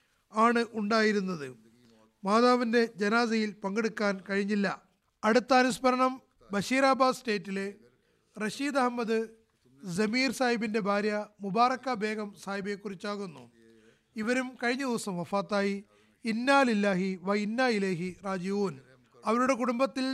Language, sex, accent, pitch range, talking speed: Malayalam, male, native, 200-255 Hz, 85 wpm